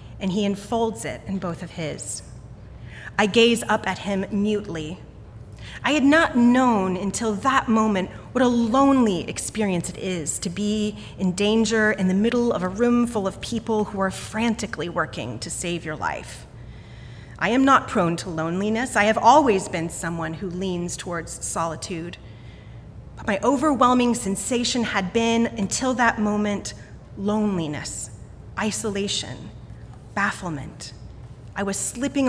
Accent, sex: American, female